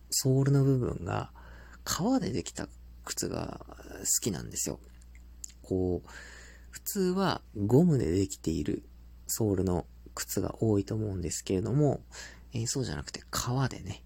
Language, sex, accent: Japanese, male, native